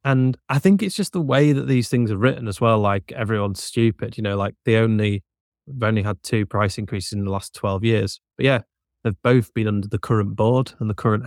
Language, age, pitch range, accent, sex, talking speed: English, 20-39, 105-125 Hz, British, male, 240 wpm